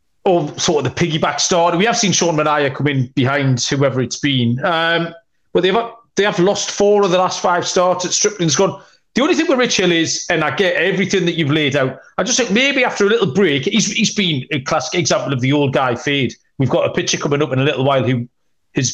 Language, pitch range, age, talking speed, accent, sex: English, 130-185 Hz, 40-59, 250 wpm, British, male